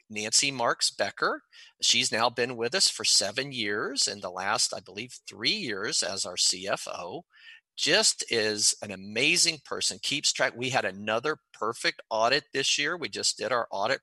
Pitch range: 105-135 Hz